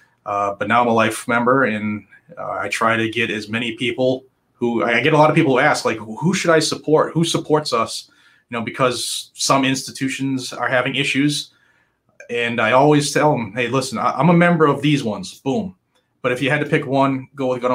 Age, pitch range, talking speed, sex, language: 30-49, 120-140 Hz, 225 wpm, male, English